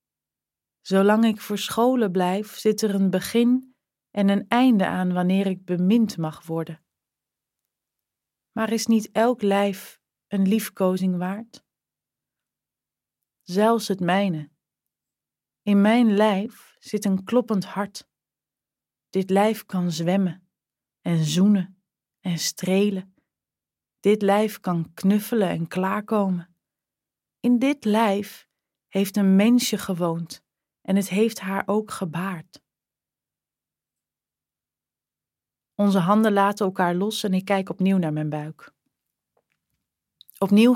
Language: Dutch